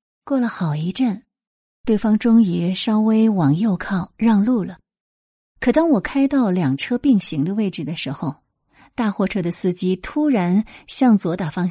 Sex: female